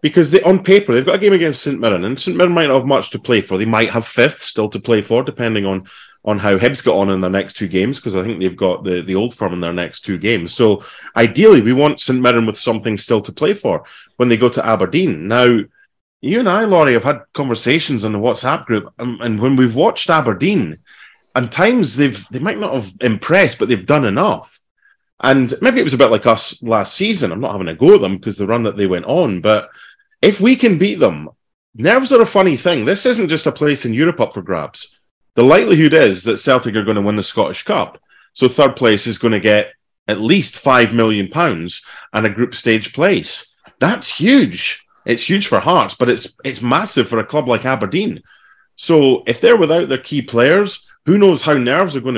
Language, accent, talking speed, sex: English, British, 235 wpm, male